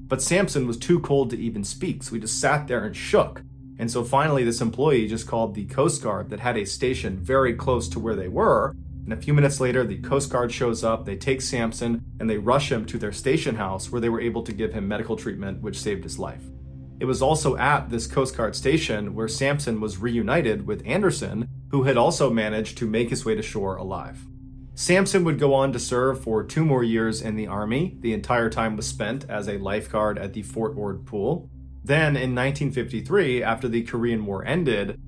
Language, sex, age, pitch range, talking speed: English, male, 30-49, 110-135 Hz, 220 wpm